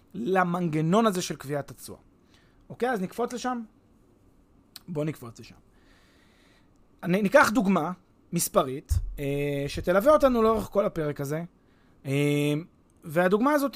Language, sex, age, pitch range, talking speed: Hebrew, male, 30-49, 155-220 Hz, 105 wpm